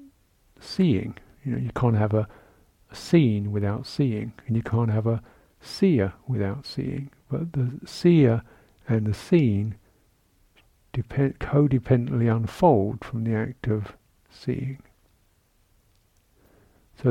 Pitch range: 110-130 Hz